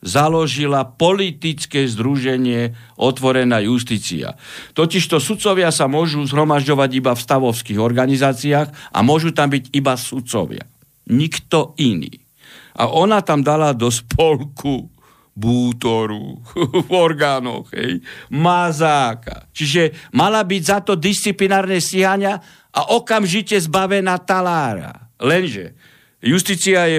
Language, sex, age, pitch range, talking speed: Slovak, male, 60-79, 130-180 Hz, 105 wpm